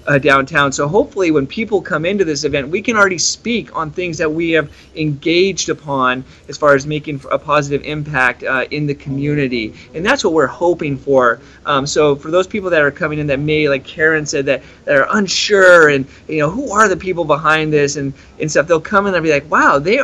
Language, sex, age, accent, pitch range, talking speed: English, male, 30-49, American, 135-165 Hz, 230 wpm